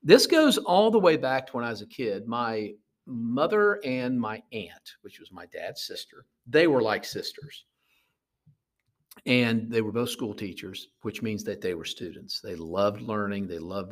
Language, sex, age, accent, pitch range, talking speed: English, male, 50-69, American, 110-180 Hz, 185 wpm